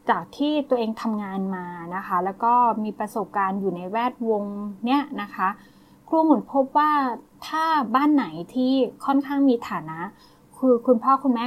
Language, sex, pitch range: Thai, female, 200-255 Hz